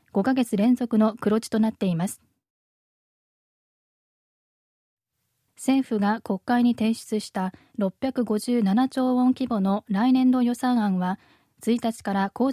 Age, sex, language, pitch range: 20-39, female, Japanese, 200-250 Hz